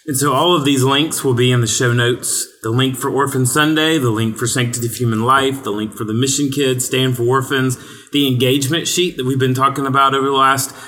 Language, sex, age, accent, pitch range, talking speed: English, male, 30-49, American, 115-140 Hz, 245 wpm